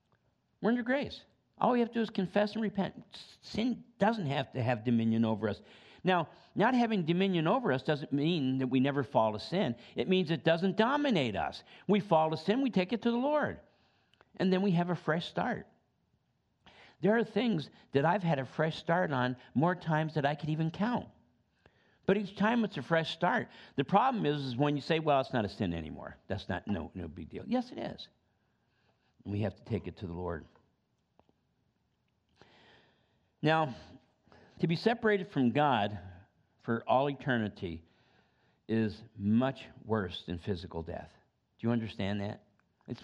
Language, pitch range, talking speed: English, 110-180 Hz, 185 wpm